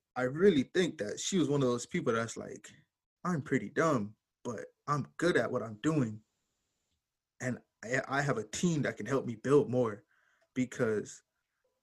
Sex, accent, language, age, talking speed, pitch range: male, American, English, 20-39, 170 wpm, 120-145 Hz